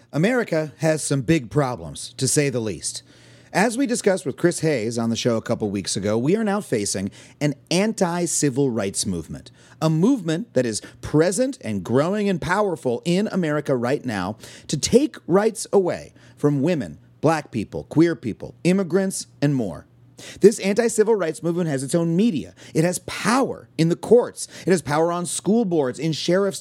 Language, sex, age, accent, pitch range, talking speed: English, male, 40-59, American, 130-195 Hz, 175 wpm